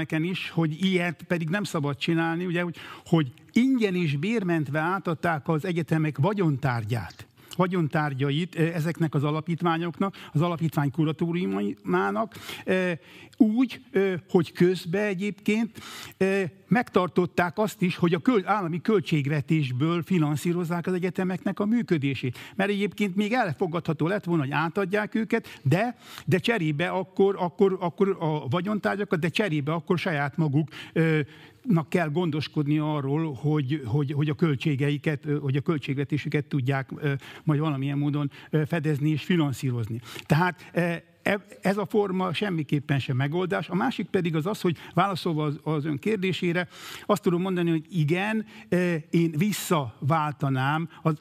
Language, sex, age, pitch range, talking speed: Hungarian, male, 60-79, 150-185 Hz, 125 wpm